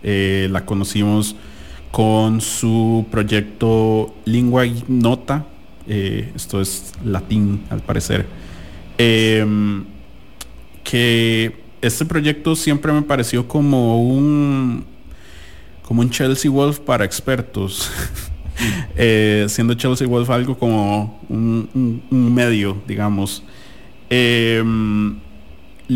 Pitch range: 100-125 Hz